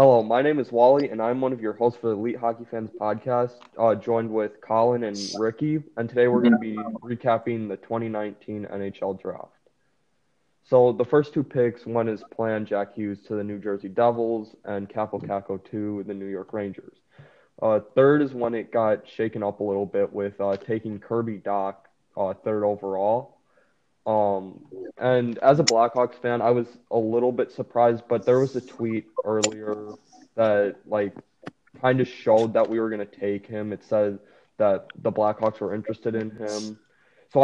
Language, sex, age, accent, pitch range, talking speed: English, male, 20-39, American, 105-125 Hz, 185 wpm